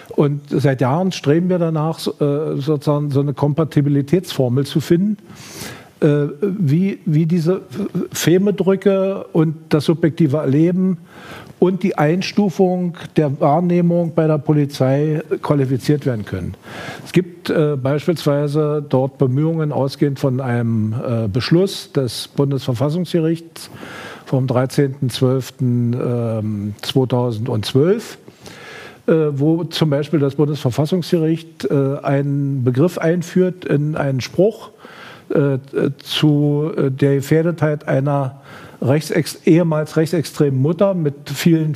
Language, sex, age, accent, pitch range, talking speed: German, male, 50-69, German, 140-170 Hz, 90 wpm